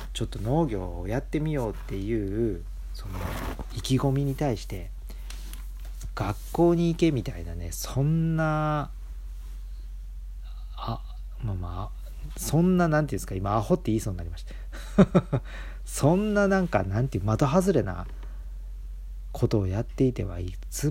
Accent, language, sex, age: native, Japanese, male, 40-59